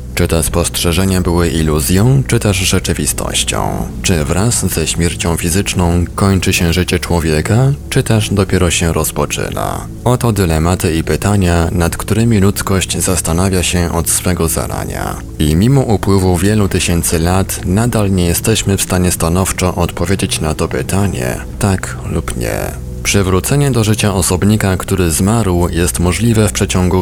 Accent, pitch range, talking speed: native, 85-100 Hz, 140 wpm